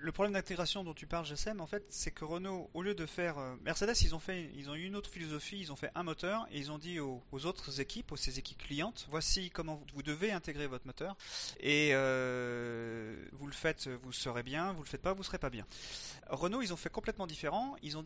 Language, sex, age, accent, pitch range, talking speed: French, male, 30-49, French, 130-175 Hz, 250 wpm